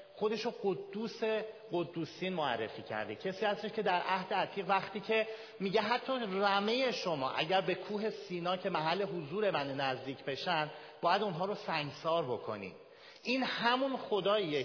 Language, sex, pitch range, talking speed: Persian, male, 170-220 Hz, 140 wpm